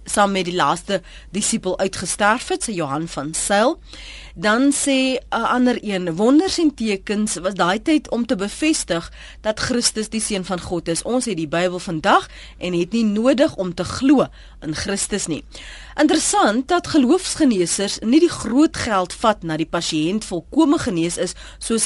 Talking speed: 165 wpm